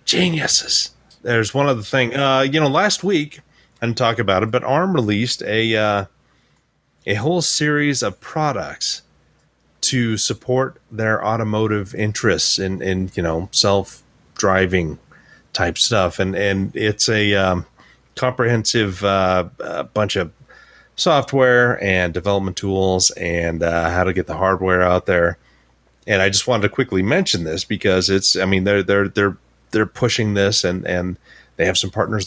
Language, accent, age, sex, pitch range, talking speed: English, American, 30-49, male, 90-115 Hz, 155 wpm